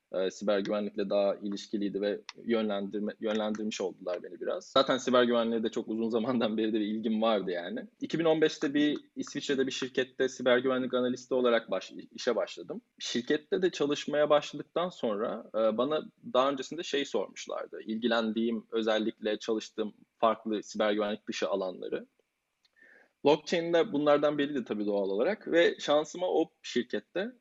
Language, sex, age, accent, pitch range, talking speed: Turkish, male, 20-39, native, 110-145 Hz, 145 wpm